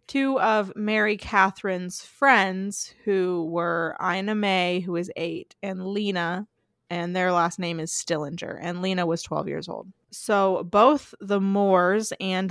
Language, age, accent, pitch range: English, 20-39, American, 180-210 Hz